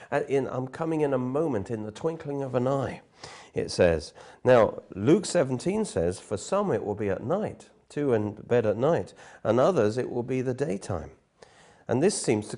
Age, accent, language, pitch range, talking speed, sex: 40-59, British, English, 95-130 Hz, 185 wpm, male